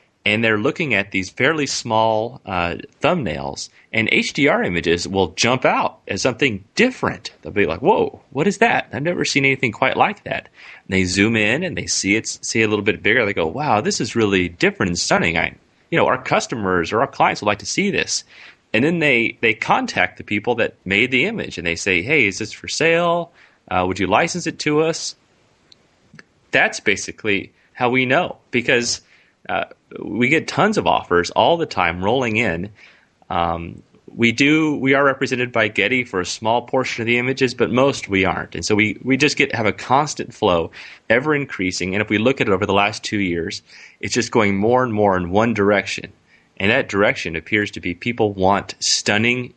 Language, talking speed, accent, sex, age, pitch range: English, 205 wpm, American, male, 30-49, 95-130 Hz